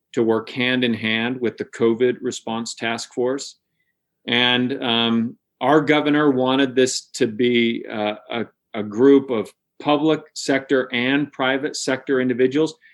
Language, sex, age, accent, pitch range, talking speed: English, male, 40-59, American, 115-140 Hz, 140 wpm